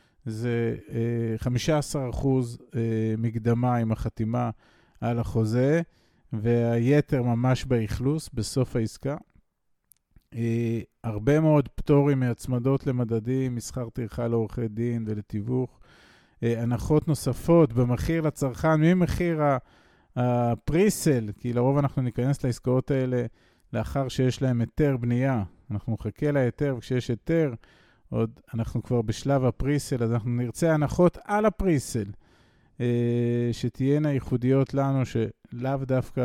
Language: Hebrew